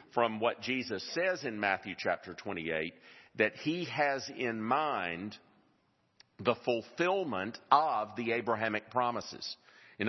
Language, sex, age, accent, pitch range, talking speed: English, male, 50-69, American, 110-130 Hz, 120 wpm